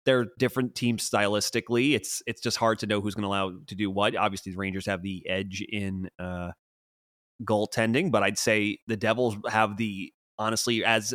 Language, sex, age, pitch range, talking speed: English, male, 30-49, 95-115 Hz, 190 wpm